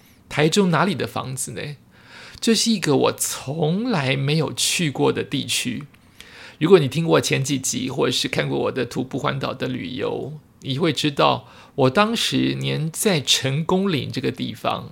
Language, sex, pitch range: Chinese, male, 135-185 Hz